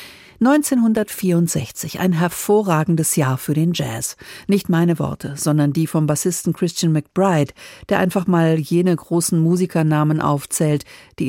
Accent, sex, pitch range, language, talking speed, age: German, female, 155-190 Hz, German, 130 wpm, 50-69